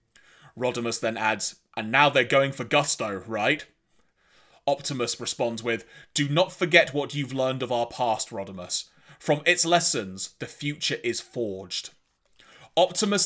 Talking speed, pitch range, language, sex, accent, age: 140 wpm, 135-190 Hz, English, male, British, 30-49